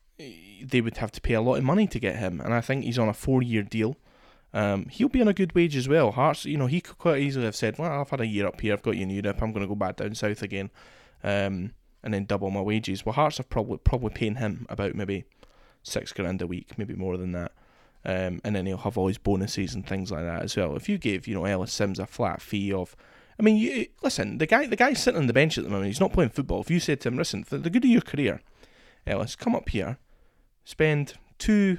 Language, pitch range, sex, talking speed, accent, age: English, 100-145 Hz, male, 270 wpm, British, 20-39